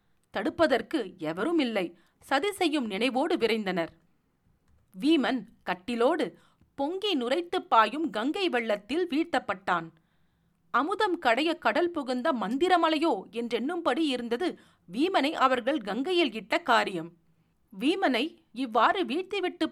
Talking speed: 90 wpm